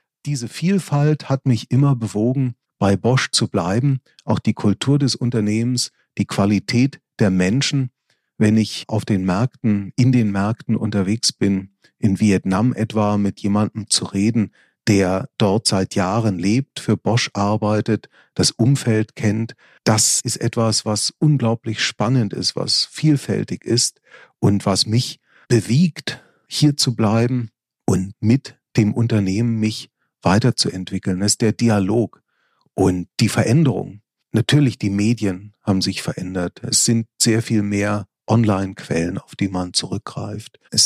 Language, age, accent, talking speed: German, 40-59, German, 135 wpm